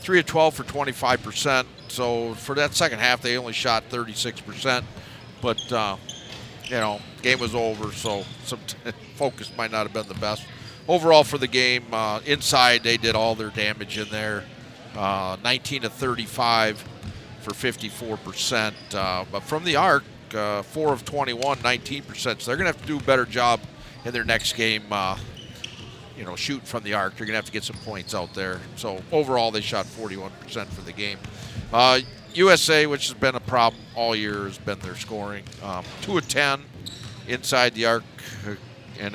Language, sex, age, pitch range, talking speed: English, male, 50-69, 105-130 Hz, 180 wpm